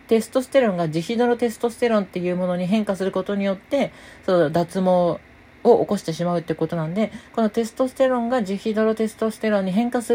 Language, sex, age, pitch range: Japanese, female, 40-59, 170-245 Hz